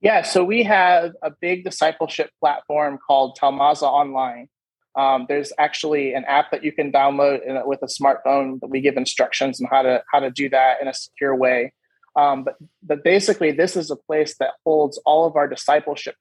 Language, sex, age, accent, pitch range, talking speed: English, male, 20-39, American, 140-170 Hz, 195 wpm